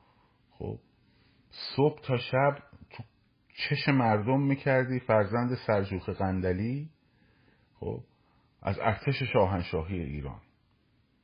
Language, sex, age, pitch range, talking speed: Persian, male, 50-69, 95-125 Hz, 85 wpm